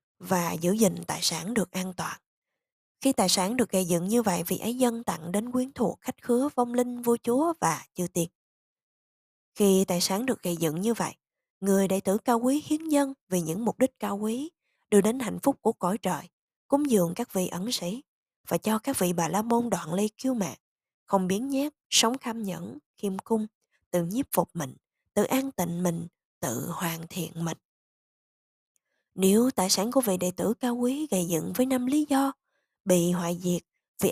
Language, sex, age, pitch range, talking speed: Vietnamese, female, 20-39, 180-245 Hz, 205 wpm